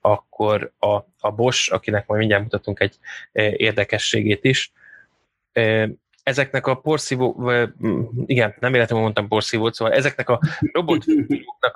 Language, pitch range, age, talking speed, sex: Hungarian, 105-120 Hz, 20-39, 115 wpm, male